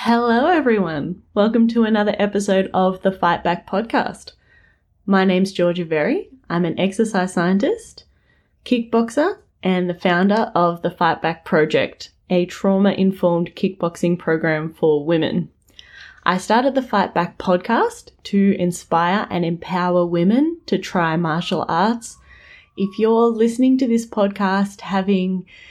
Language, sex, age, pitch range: English, female, 20-39, 175-220 Hz